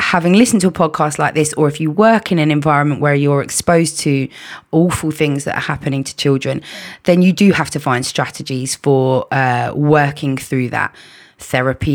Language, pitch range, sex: English, 135-160 Hz, female